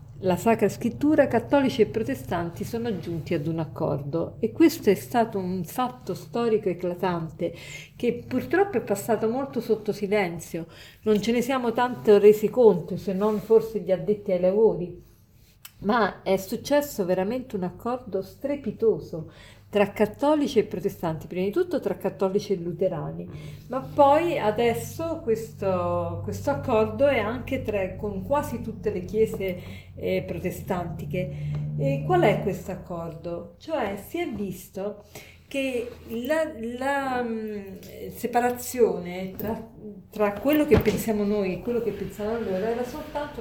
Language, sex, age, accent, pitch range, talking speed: Italian, female, 50-69, native, 185-235 Hz, 140 wpm